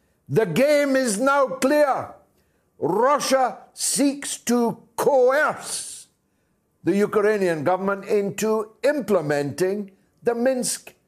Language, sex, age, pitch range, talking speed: English, male, 60-79, 190-270 Hz, 85 wpm